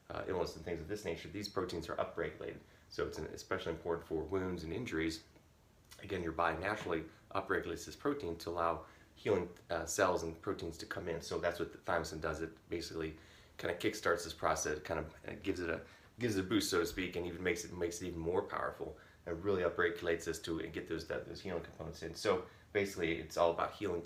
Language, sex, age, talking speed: English, male, 30-49, 220 wpm